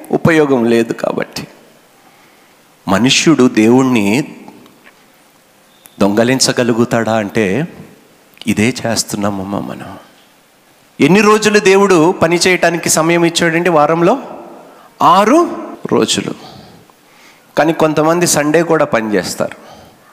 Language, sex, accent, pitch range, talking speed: Telugu, male, native, 105-140 Hz, 70 wpm